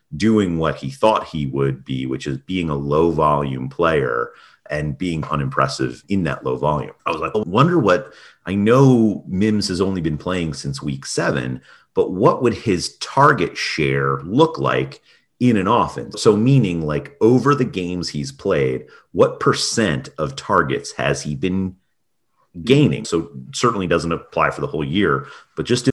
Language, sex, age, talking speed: English, male, 40-59, 170 wpm